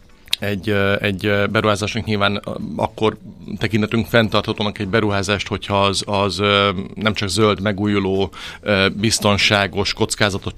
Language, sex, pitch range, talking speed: Hungarian, male, 95-105 Hz, 100 wpm